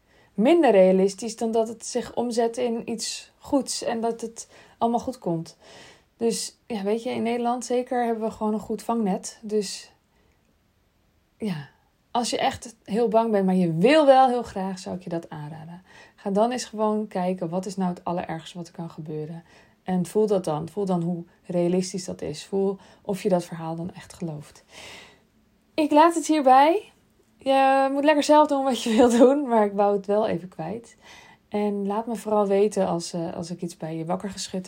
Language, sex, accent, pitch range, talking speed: Dutch, female, Dutch, 180-230 Hz, 195 wpm